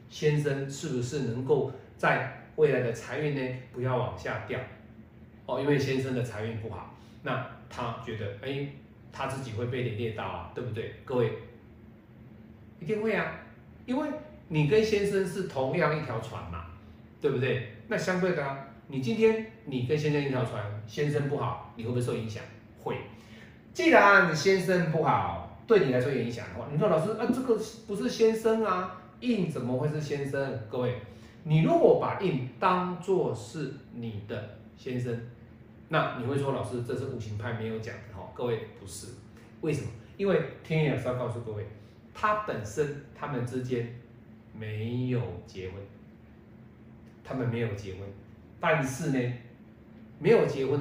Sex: male